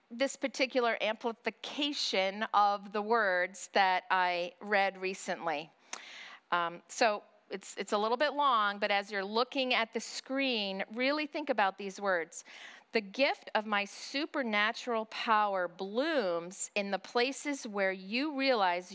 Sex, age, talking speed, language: female, 40-59, 135 wpm, English